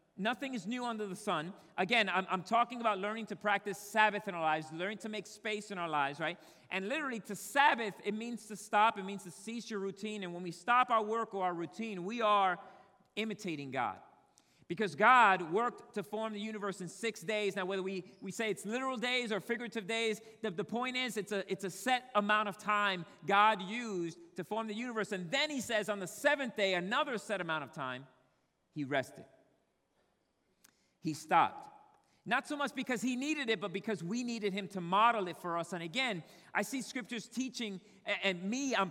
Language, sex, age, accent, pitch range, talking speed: English, male, 40-59, American, 185-225 Hz, 205 wpm